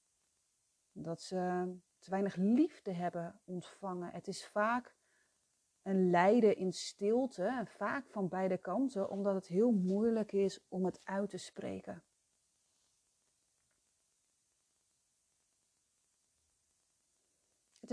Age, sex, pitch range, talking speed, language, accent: 40-59, female, 195-250 Hz, 95 wpm, Dutch, Dutch